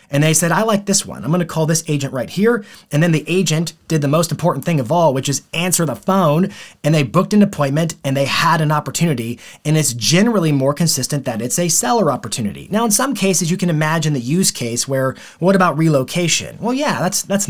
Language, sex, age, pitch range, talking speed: English, male, 30-49, 135-180 Hz, 235 wpm